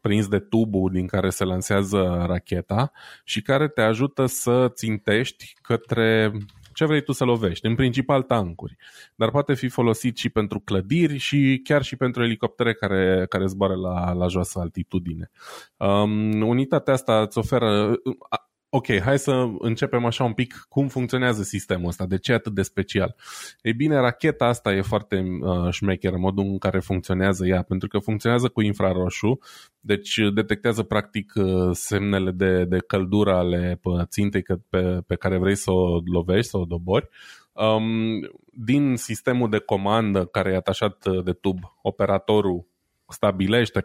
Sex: male